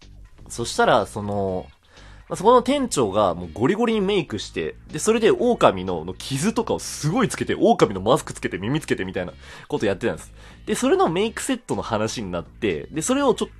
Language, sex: Japanese, male